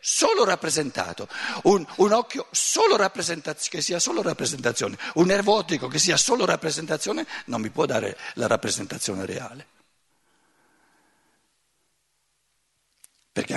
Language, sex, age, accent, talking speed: Italian, male, 60-79, native, 115 wpm